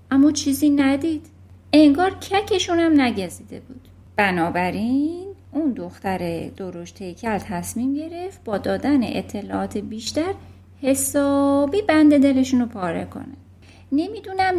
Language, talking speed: Persian, 105 wpm